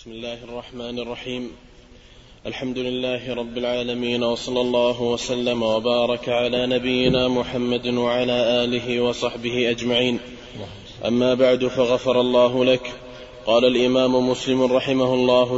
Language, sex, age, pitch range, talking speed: Arabic, male, 20-39, 125-130 Hz, 110 wpm